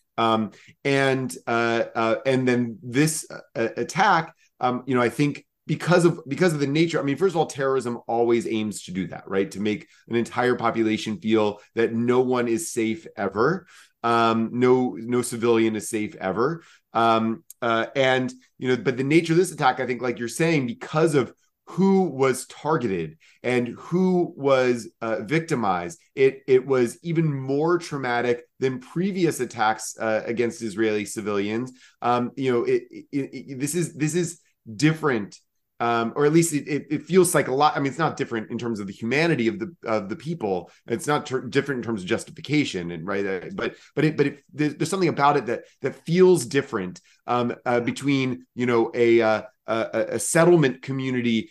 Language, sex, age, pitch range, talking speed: English, male, 30-49, 115-145 Hz, 185 wpm